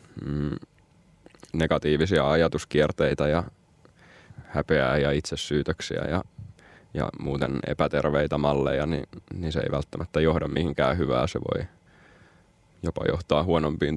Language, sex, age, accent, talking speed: Finnish, male, 20-39, native, 105 wpm